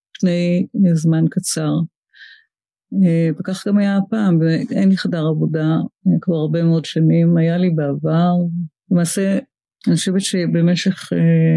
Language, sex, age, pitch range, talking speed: Hebrew, female, 50-69, 165-190 Hz, 115 wpm